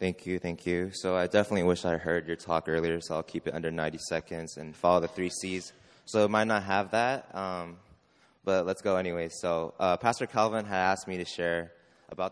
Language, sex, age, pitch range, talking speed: English, male, 20-39, 80-95 Hz, 225 wpm